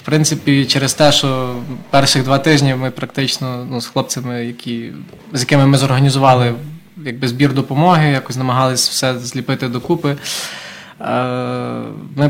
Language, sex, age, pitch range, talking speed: Ukrainian, male, 20-39, 125-145 Hz, 130 wpm